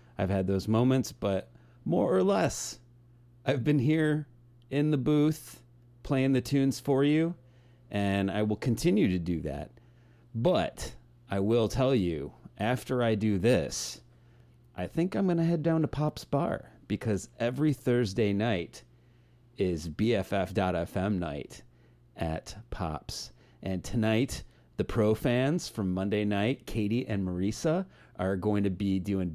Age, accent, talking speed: 30-49, American, 140 wpm